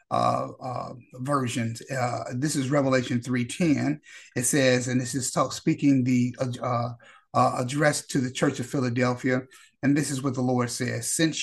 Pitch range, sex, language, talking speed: 125-140 Hz, male, English, 170 wpm